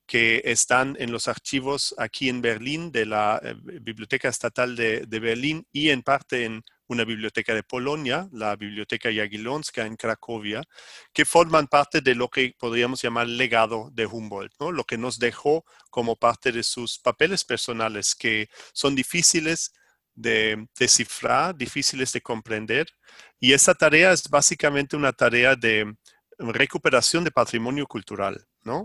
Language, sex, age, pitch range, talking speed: Spanish, male, 40-59, 115-140 Hz, 150 wpm